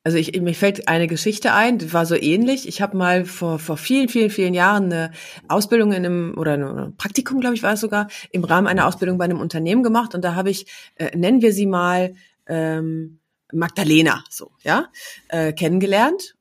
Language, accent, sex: German, German, female